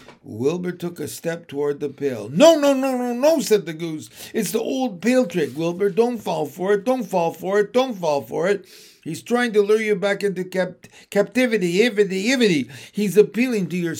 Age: 60-79